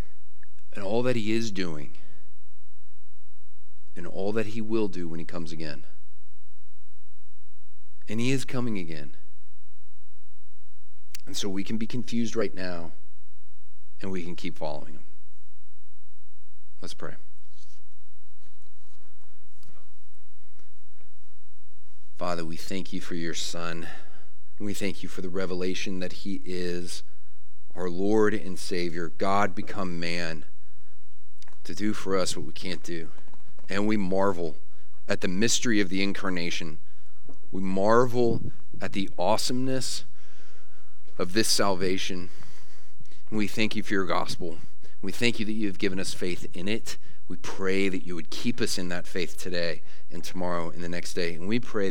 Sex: male